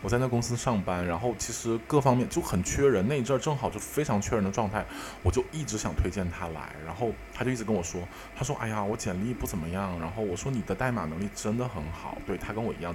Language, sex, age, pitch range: Chinese, male, 20-39, 90-125 Hz